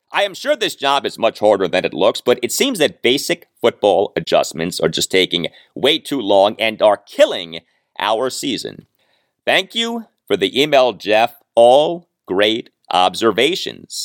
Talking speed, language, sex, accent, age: 160 wpm, English, male, American, 40-59